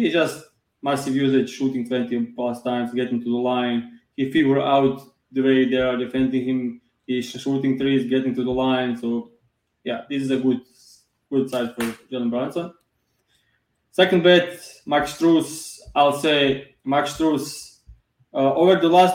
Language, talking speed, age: English, 160 wpm, 20-39